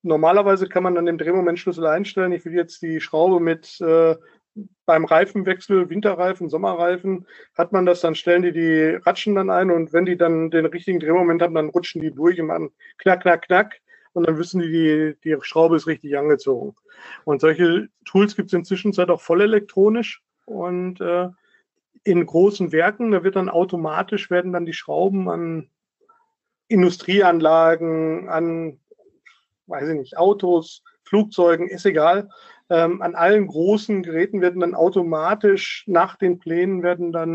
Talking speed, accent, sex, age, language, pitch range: 160 wpm, German, male, 50-69, German, 165-200 Hz